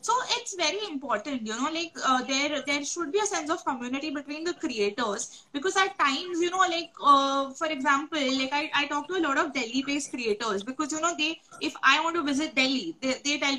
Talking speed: 225 wpm